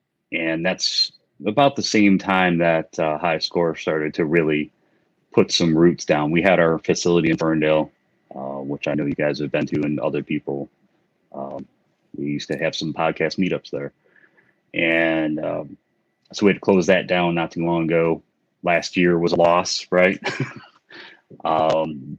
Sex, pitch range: male, 80-90 Hz